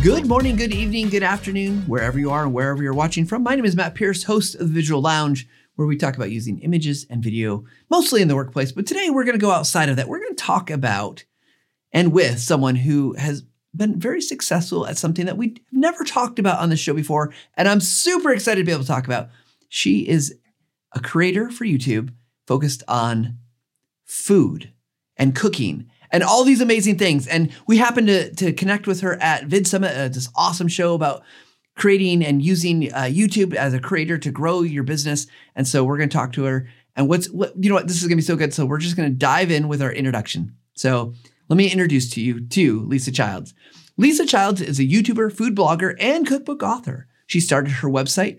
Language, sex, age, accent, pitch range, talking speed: English, male, 30-49, American, 135-200 Hz, 215 wpm